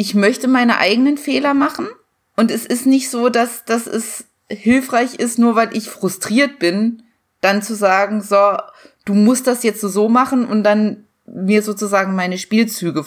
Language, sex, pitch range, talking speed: German, female, 195-240 Hz, 170 wpm